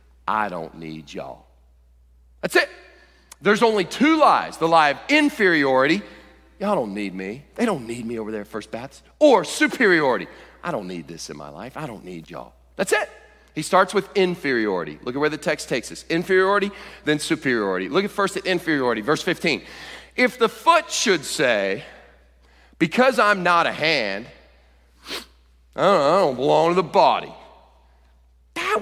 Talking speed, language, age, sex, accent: 165 wpm, English, 40-59, male, American